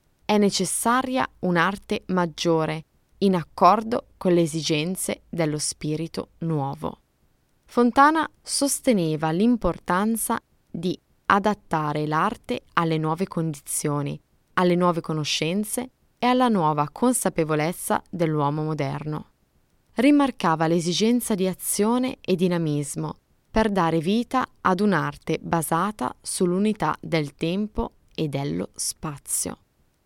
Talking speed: 95 wpm